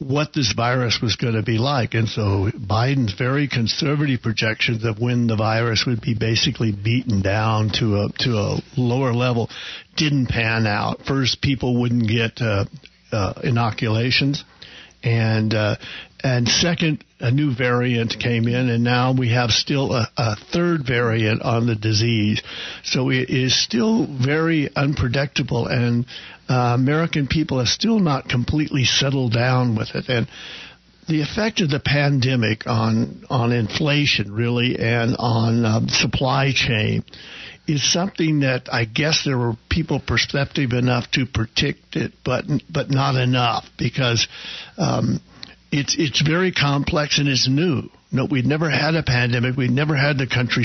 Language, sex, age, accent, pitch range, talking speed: English, male, 60-79, American, 115-145 Hz, 160 wpm